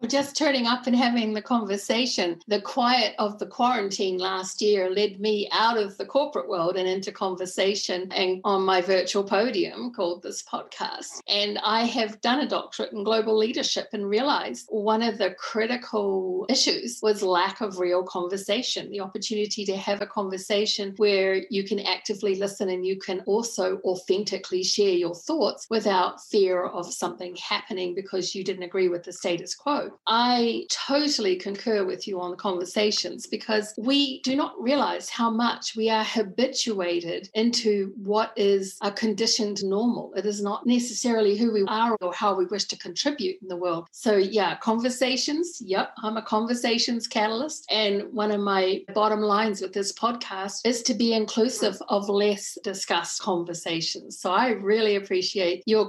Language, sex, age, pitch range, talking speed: English, female, 50-69, 190-230 Hz, 165 wpm